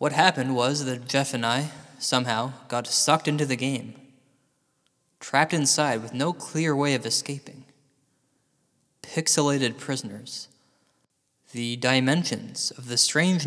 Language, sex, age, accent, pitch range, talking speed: English, male, 20-39, American, 120-155 Hz, 125 wpm